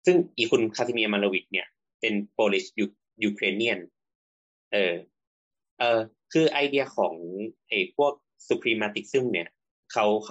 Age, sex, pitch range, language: 20-39, male, 95-135 Hz, Thai